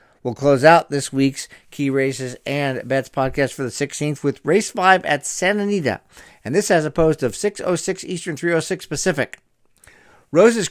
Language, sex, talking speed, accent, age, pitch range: English, male, 170 wpm, American, 50-69, 130-165 Hz